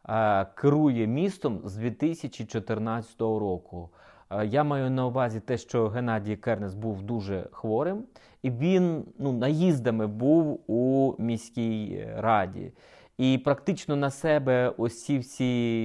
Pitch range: 115-155 Hz